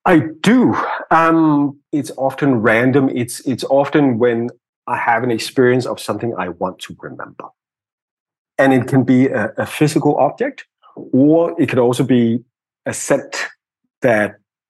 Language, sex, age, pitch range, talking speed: English, male, 30-49, 110-130 Hz, 145 wpm